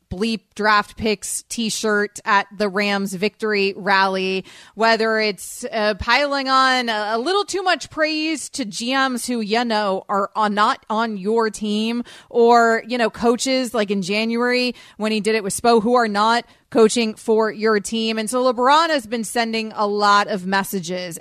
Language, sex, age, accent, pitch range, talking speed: English, female, 30-49, American, 200-245 Hz, 170 wpm